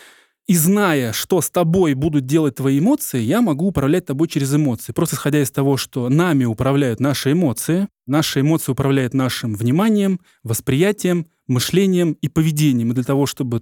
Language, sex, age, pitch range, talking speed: Russian, male, 20-39, 130-165 Hz, 165 wpm